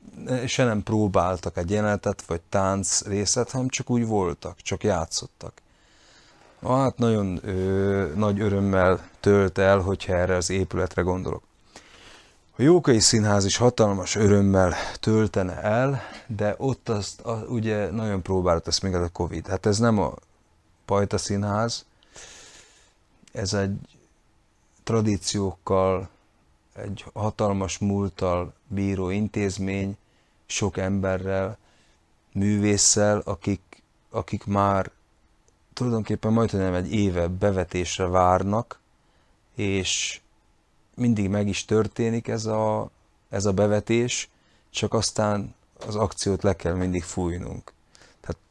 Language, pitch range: Hungarian, 95-110 Hz